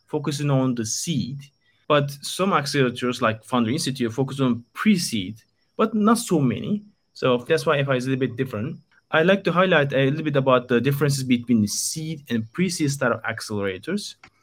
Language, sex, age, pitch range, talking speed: English, male, 20-39, 125-150 Hz, 180 wpm